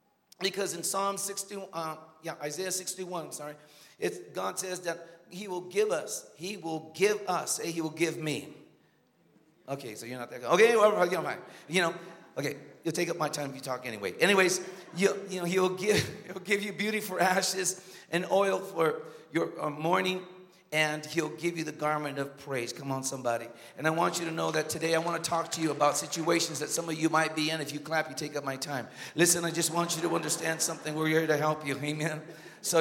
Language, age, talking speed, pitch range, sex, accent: English, 40-59, 225 wpm, 150-180 Hz, male, American